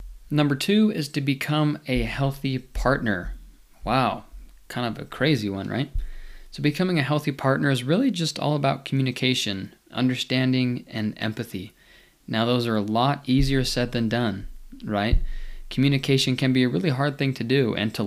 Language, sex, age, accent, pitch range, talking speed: English, male, 20-39, American, 110-140 Hz, 165 wpm